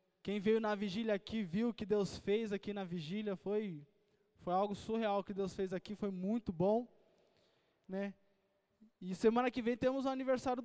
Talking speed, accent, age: 180 wpm, Brazilian, 20-39